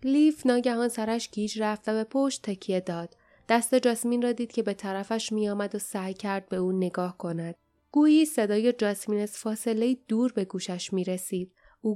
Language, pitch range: Persian, 195-245 Hz